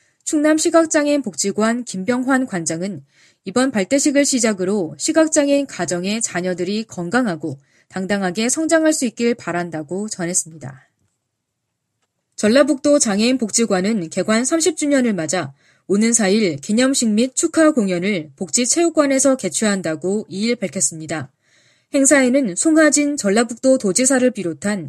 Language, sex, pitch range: Korean, female, 180-270 Hz